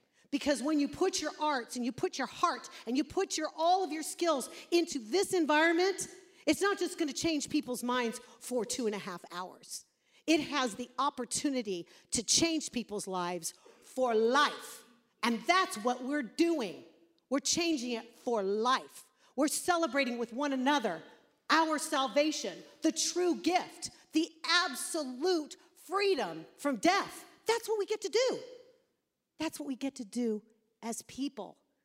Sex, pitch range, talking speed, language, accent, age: female, 240-325 Hz, 160 wpm, English, American, 40-59